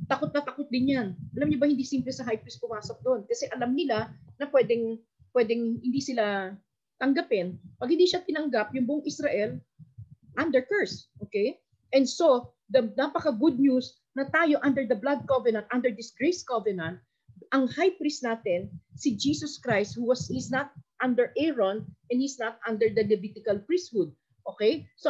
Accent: native